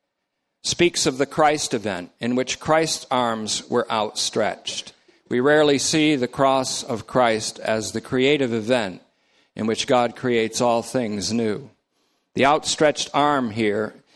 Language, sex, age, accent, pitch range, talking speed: English, male, 50-69, American, 115-135 Hz, 140 wpm